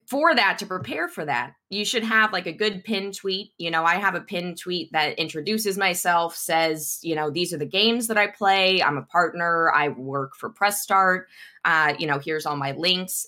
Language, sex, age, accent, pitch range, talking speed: English, female, 20-39, American, 155-205 Hz, 220 wpm